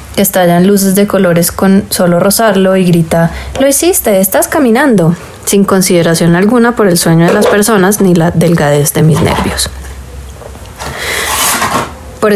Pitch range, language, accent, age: 170-200 Hz, Spanish, Colombian, 20-39